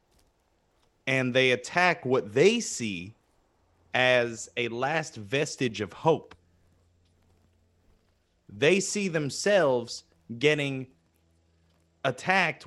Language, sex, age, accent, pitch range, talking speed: English, male, 30-49, American, 90-140 Hz, 80 wpm